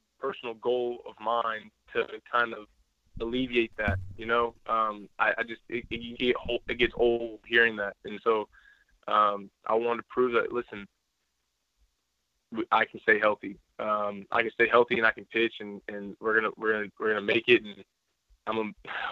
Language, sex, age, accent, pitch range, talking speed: English, male, 20-39, American, 95-115 Hz, 180 wpm